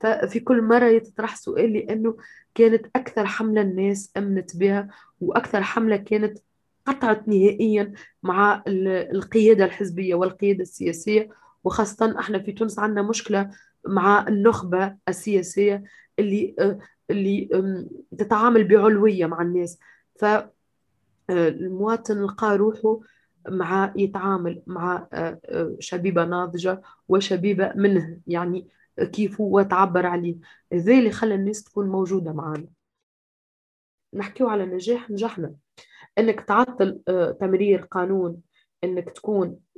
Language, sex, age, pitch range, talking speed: Arabic, female, 20-39, 180-215 Hz, 105 wpm